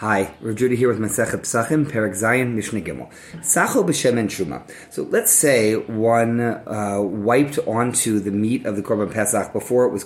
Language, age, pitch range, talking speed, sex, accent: English, 30-49, 105-135 Hz, 180 wpm, male, American